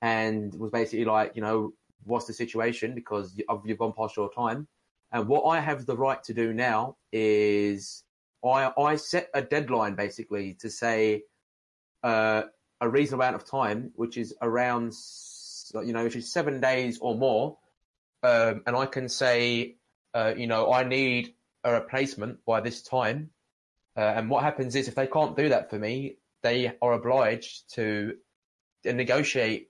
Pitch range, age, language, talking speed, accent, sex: 110-130 Hz, 20-39, English, 165 wpm, British, male